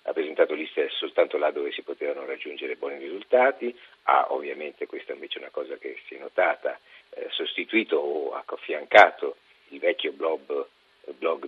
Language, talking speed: Italian, 160 wpm